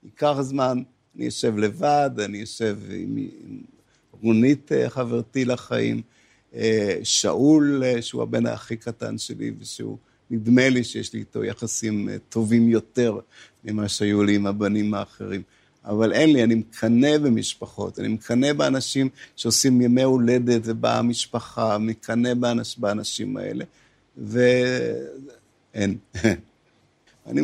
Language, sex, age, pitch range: Hebrew, male, 50-69, 105-125 Hz